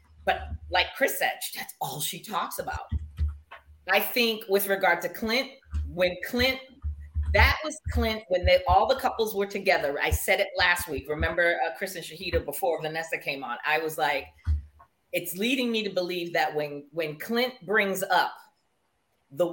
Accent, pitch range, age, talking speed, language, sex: American, 160-220 Hz, 40-59, 170 wpm, English, female